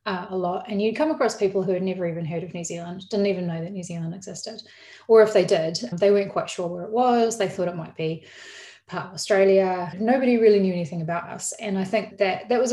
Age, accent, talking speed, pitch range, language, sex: 30-49, Australian, 255 wpm, 180-210 Hz, English, female